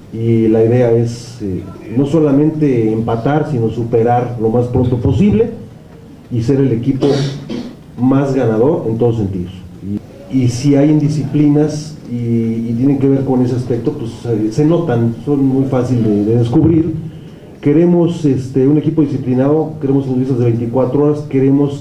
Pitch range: 120-150 Hz